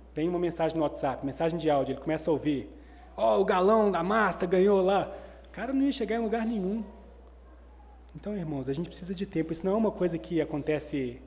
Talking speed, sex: 220 wpm, male